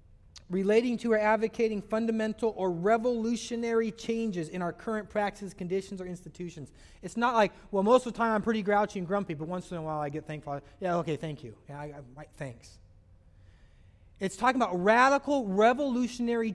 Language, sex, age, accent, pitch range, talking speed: English, male, 30-49, American, 160-245 Hz, 185 wpm